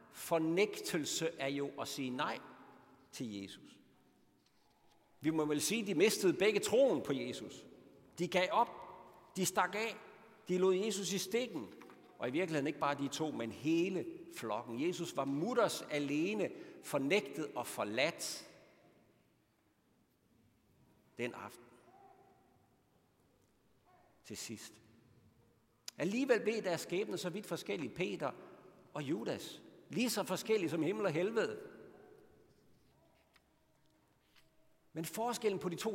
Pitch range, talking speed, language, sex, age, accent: 125-200 Hz, 120 wpm, Danish, male, 60-79, native